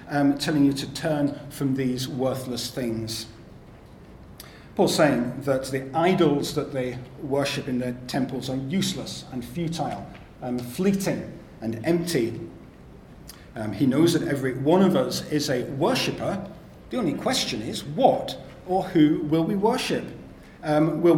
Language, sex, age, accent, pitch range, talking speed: English, male, 40-59, British, 130-175 Hz, 145 wpm